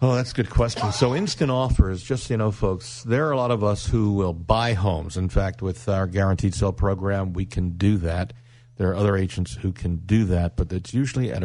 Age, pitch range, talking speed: 50-69, 100-120 Hz, 240 wpm